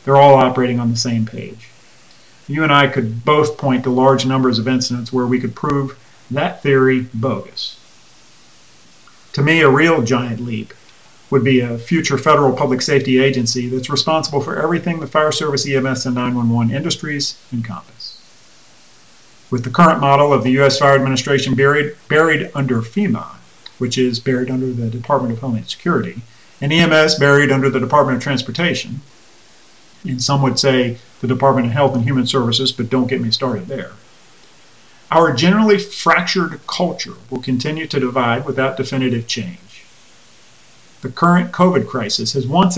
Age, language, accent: 40-59, English, American